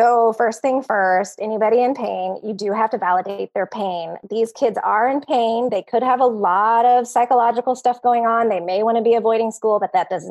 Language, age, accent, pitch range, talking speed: English, 20-39, American, 195-245 Hz, 225 wpm